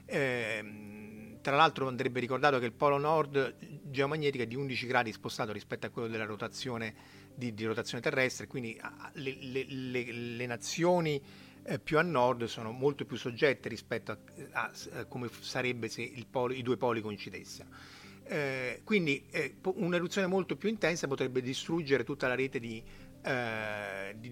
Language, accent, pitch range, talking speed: Italian, native, 115-150 Hz, 165 wpm